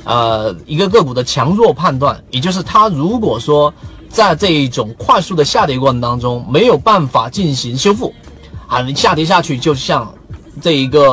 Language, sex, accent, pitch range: Chinese, male, native, 130-190 Hz